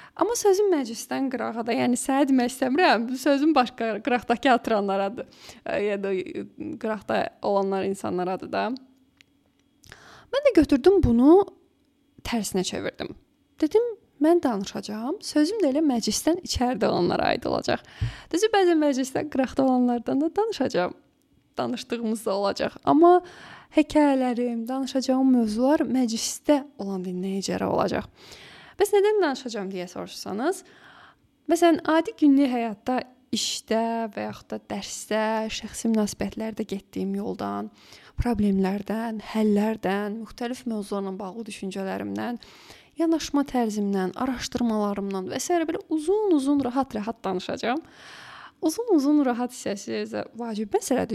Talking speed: 105 wpm